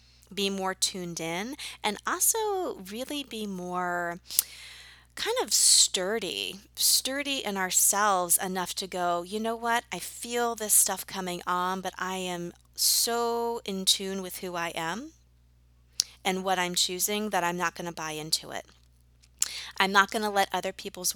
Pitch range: 170-215 Hz